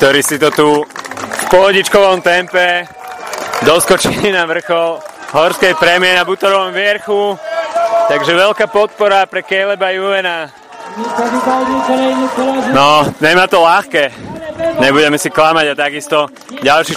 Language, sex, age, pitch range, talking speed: Slovak, male, 30-49, 145-190 Hz, 110 wpm